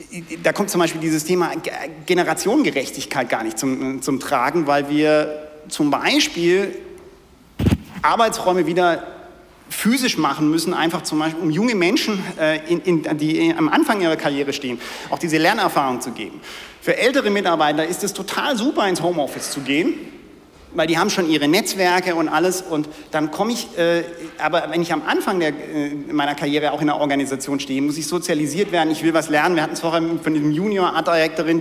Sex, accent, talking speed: male, German, 180 wpm